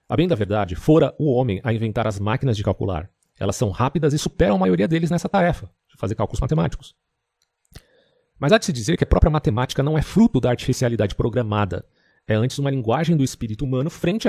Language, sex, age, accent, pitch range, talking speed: Portuguese, male, 40-59, Brazilian, 105-150 Hz, 210 wpm